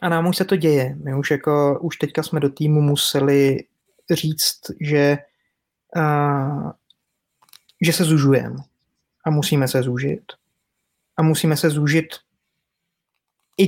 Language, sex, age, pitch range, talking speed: Czech, male, 20-39, 140-155 Hz, 130 wpm